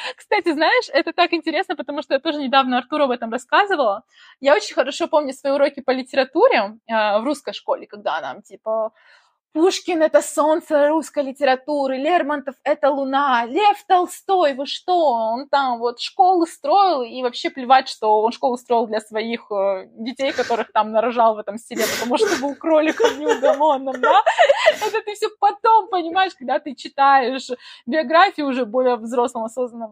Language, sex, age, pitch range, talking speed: Russian, female, 20-39, 220-315 Hz, 165 wpm